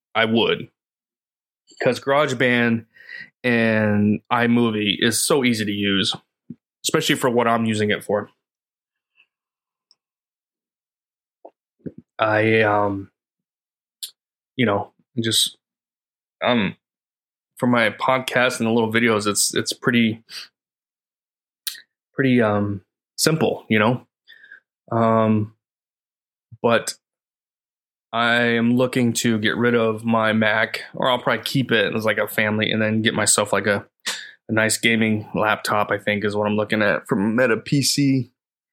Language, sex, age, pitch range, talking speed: English, male, 20-39, 110-125 Hz, 120 wpm